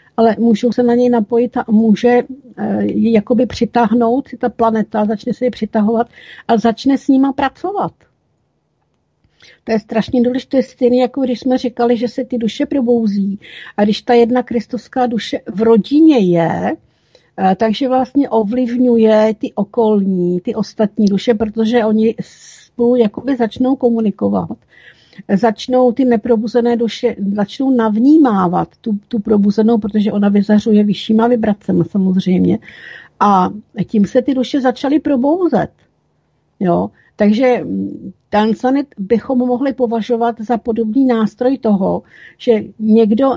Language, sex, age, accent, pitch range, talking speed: Czech, female, 50-69, native, 210-250 Hz, 135 wpm